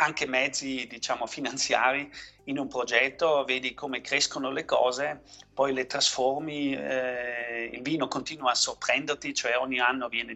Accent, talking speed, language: native, 145 wpm, Italian